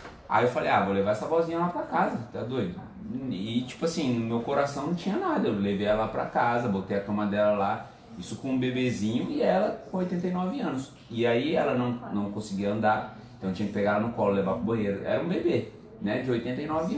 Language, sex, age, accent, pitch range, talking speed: Portuguese, male, 20-39, Brazilian, 100-140 Hz, 235 wpm